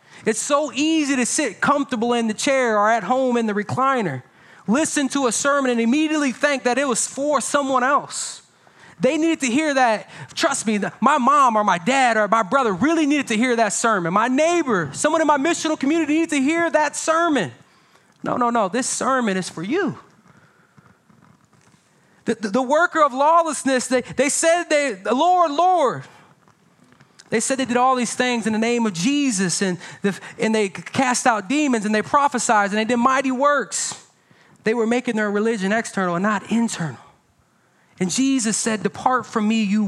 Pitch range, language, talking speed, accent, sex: 210-280 Hz, English, 185 wpm, American, male